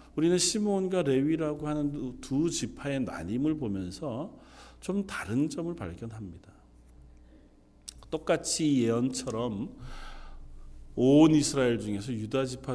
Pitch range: 110-170 Hz